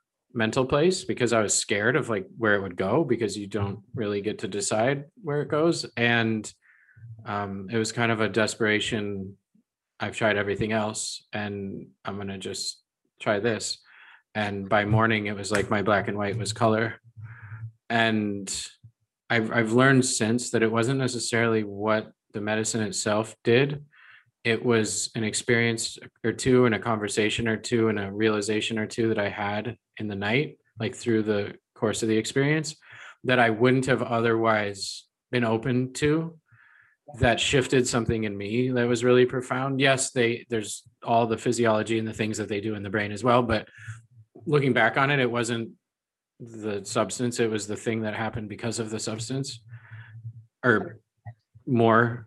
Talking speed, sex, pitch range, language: 175 wpm, male, 110-120 Hz, English